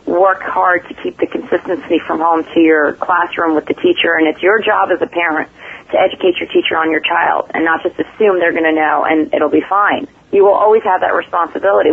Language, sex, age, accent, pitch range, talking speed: English, female, 40-59, American, 165-205 Hz, 225 wpm